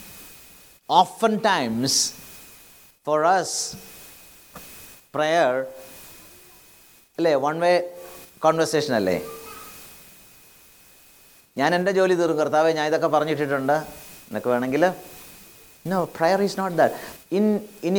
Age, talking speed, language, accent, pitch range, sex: 50-69, 50 wpm, English, Indian, 150-195 Hz, male